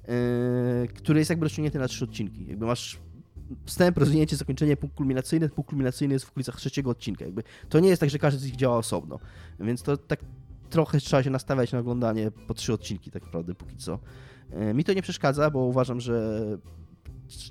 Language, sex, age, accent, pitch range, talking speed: Polish, male, 20-39, native, 115-150 Hz, 195 wpm